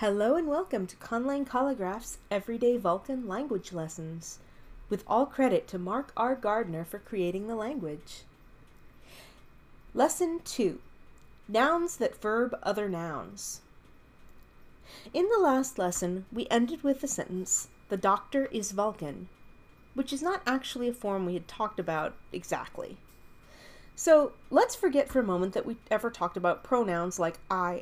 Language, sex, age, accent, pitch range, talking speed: English, female, 40-59, American, 180-265 Hz, 140 wpm